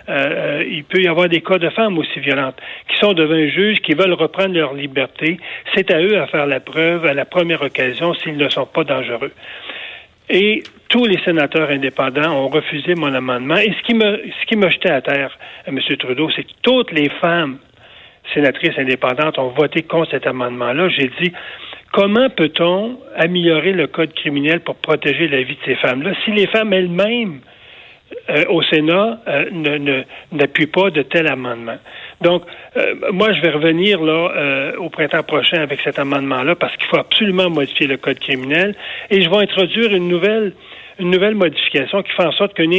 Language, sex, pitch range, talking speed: French, male, 150-195 Hz, 190 wpm